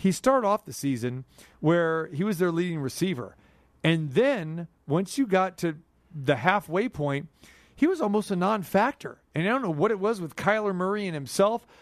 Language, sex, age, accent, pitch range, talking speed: English, male, 40-59, American, 155-205 Hz, 190 wpm